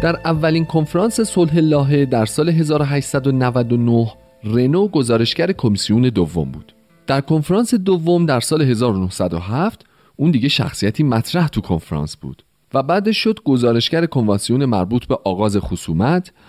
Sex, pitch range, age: male, 95-145 Hz, 40-59